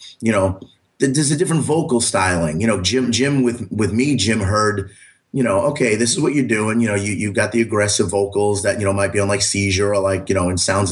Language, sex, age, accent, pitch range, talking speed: English, male, 30-49, American, 95-120 Hz, 255 wpm